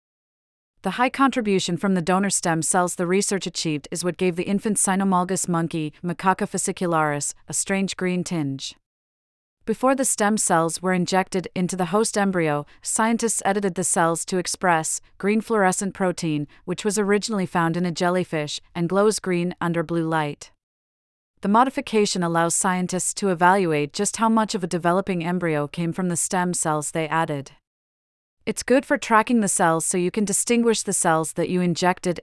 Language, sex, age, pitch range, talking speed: English, female, 30-49, 165-195 Hz, 170 wpm